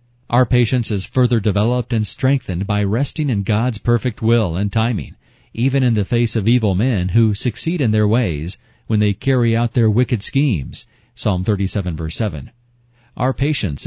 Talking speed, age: 175 wpm, 40-59